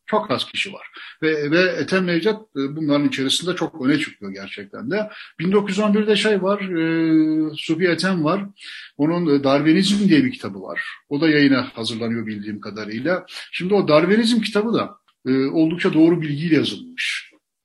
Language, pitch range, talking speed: Turkish, 130-180 Hz, 150 wpm